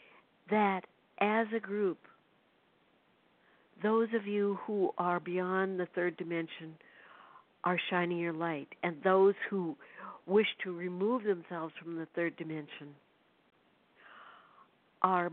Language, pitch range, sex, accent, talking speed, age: English, 160-185 Hz, female, American, 115 wpm, 60-79